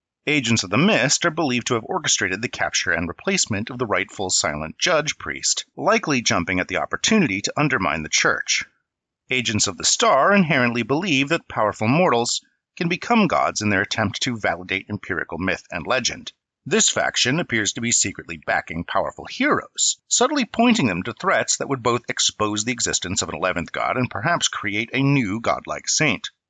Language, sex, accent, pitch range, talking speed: English, male, American, 105-165 Hz, 180 wpm